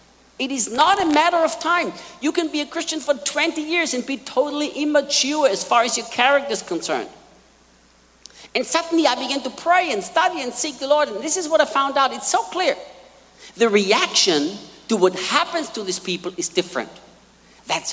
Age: 50-69